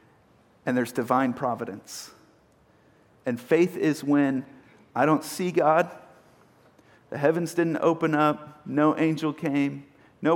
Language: English